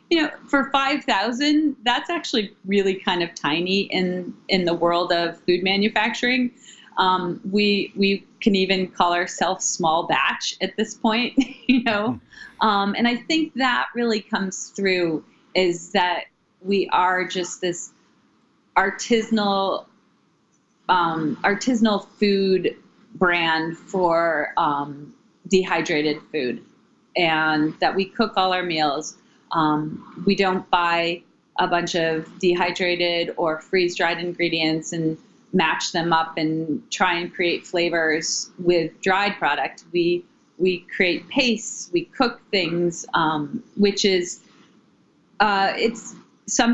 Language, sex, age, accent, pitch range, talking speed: English, female, 30-49, American, 175-230 Hz, 125 wpm